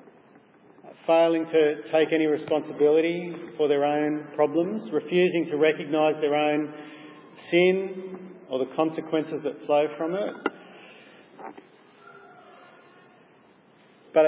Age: 40-59